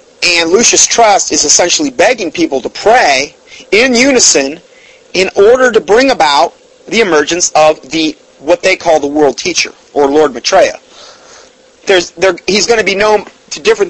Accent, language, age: American, English, 30-49